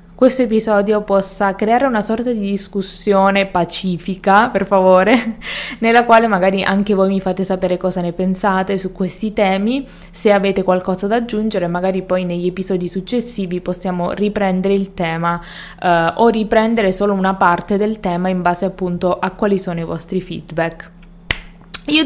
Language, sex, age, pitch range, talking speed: Italian, female, 20-39, 180-220 Hz, 150 wpm